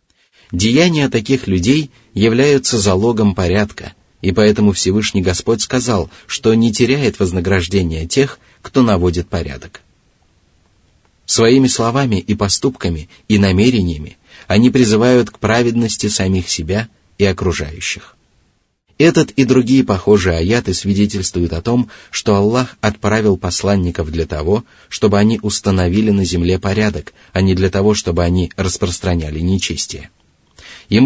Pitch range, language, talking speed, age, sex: 90-110 Hz, Russian, 120 wpm, 30-49, male